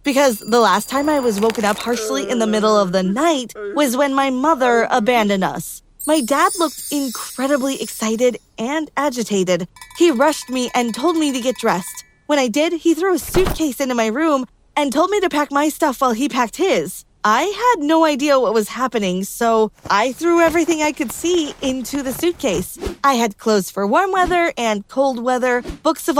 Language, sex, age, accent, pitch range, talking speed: English, female, 20-39, American, 220-295 Hz, 195 wpm